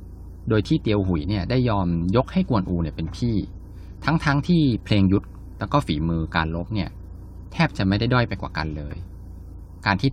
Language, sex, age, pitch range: Thai, male, 20-39, 85-105 Hz